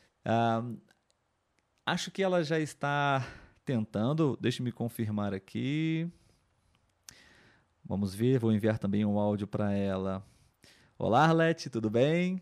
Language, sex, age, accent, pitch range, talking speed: Portuguese, male, 20-39, Brazilian, 110-150 Hz, 115 wpm